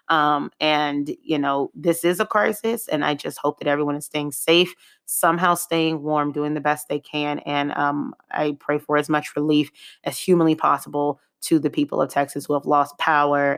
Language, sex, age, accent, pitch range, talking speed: English, female, 30-49, American, 145-165 Hz, 200 wpm